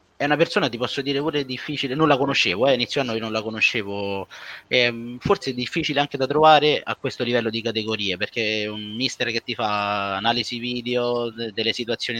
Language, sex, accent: Italian, male, native